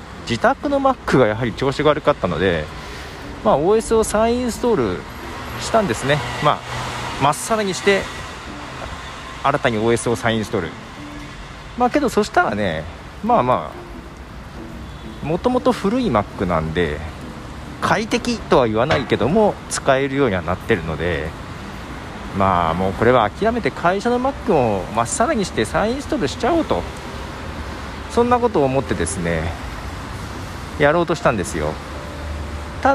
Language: Japanese